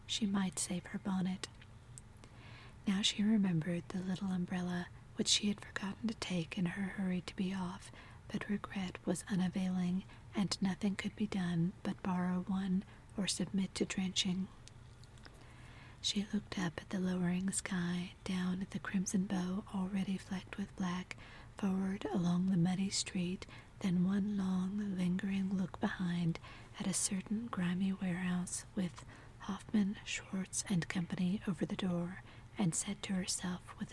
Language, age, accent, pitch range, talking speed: English, 40-59, American, 175-195 Hz, 150 wpm